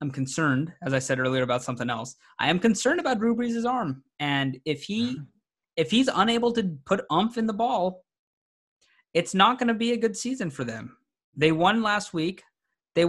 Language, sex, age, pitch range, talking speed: English, male, 20-39, 130-180 Hz, 195 wpm